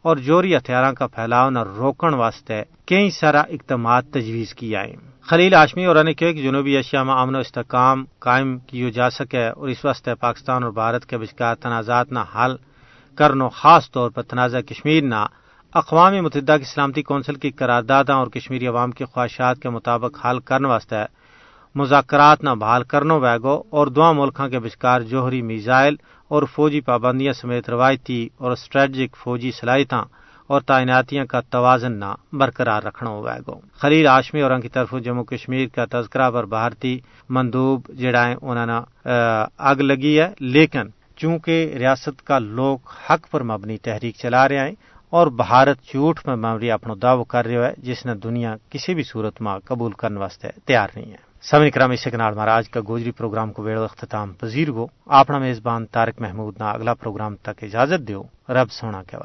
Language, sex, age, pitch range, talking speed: Urdu, male, 40-59, 120-140 Hz, 170 wpm